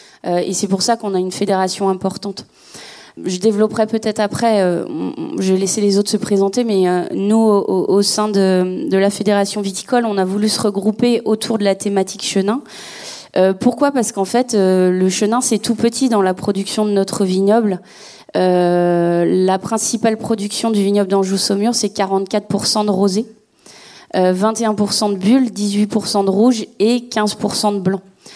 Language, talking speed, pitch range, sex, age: French, 155 wpm, 190-220 Hz, female, 20-39